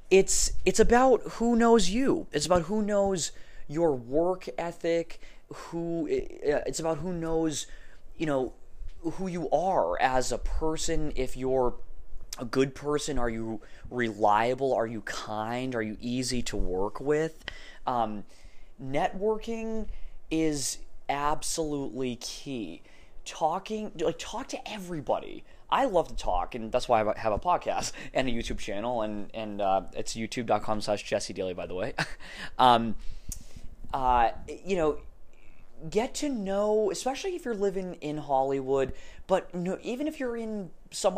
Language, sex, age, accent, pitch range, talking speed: English, male, 20-39, American, 115-185 Hz, 145 wpm